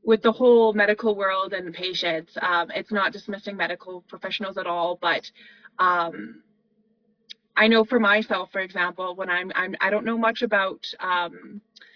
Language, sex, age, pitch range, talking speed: English, female, 20-39, 180-215 Hz, 160 wpm